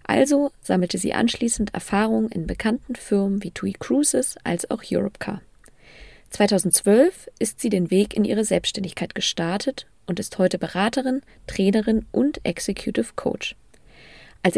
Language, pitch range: German, 185-235 Hz